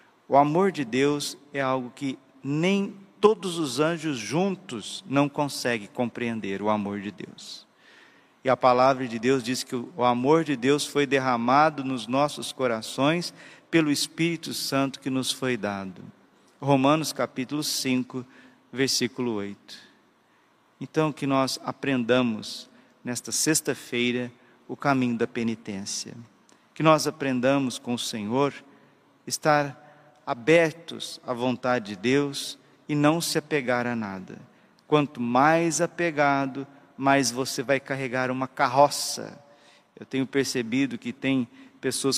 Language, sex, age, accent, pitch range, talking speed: Portuguese, male, 50-69, Brazilian, 125-145 Hz, 130 wpm